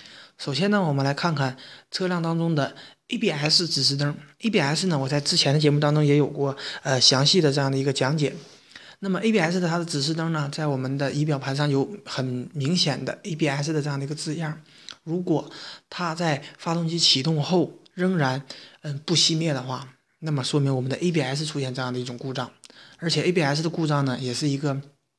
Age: 20-39